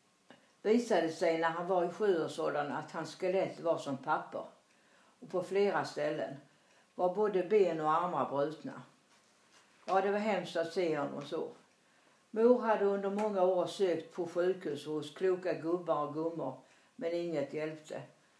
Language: English